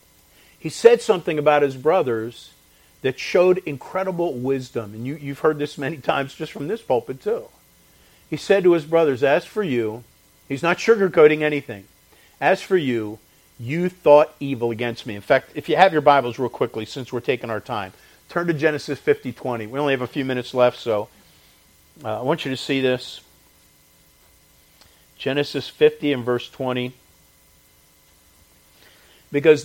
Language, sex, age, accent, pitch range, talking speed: English, male, 50-69, American, 115-150 Hz, 165 wpm